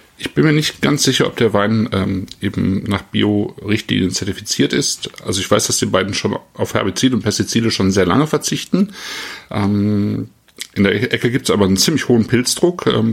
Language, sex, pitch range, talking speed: German, male, 95-120 Hz, 190 wpm